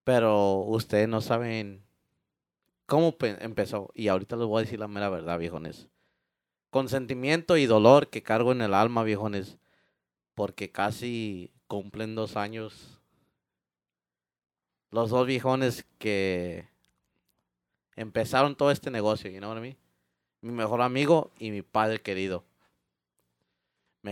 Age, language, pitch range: 30-49, English, 75-125 Hz